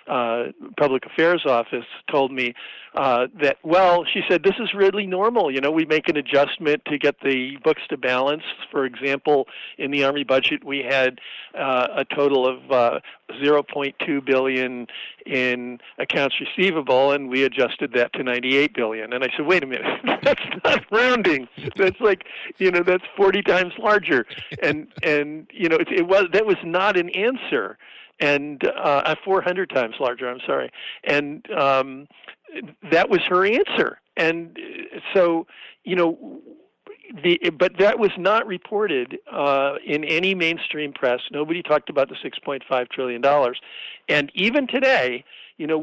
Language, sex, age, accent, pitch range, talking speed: English, male, 50-69, American, 135-185 Hz, 155 wpm